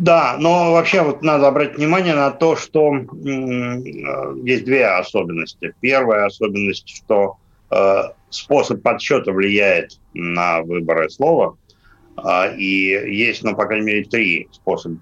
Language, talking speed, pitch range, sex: Russian, 130 wpm, 100-130 Hz, male